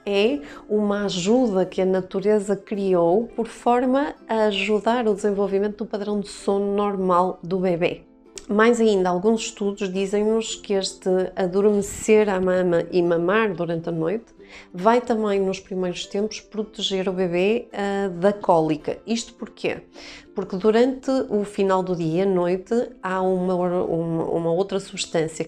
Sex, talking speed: female, 140 wpm